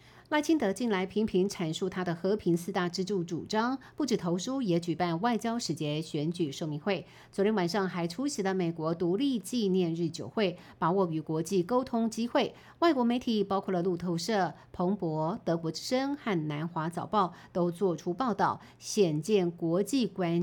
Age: 50-69